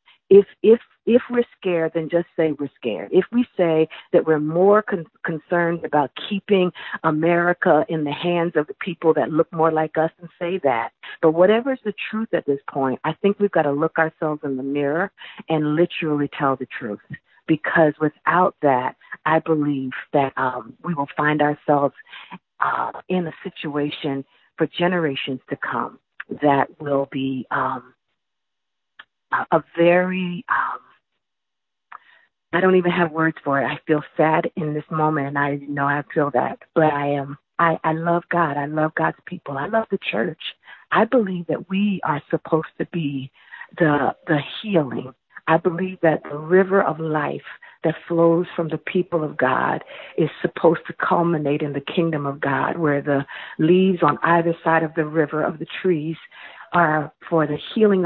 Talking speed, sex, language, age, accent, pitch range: 175 wpm, female, English, 50-69, American, 150-175 Hz